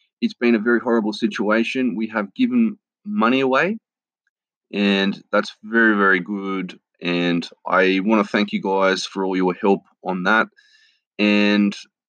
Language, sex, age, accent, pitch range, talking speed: English, male, 20-39, Australian, 105-140 Hz, 150 wpm